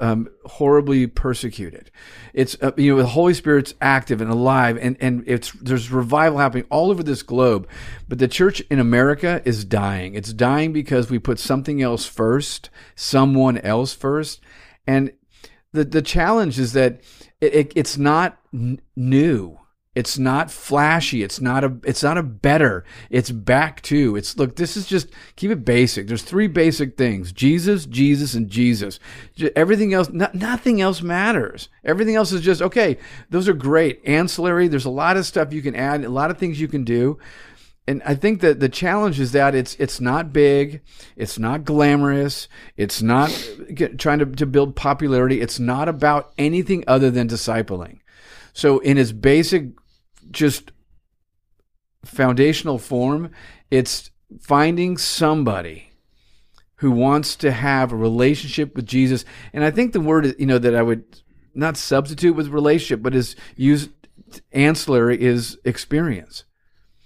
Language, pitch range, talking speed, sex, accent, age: English, 125-155 Hz, 160 wpm, male, American, 40-59